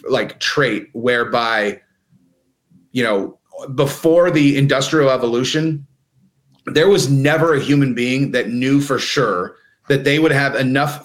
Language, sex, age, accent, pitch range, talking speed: English, male, 30-49, American, 130-155 Hz, 130 wpm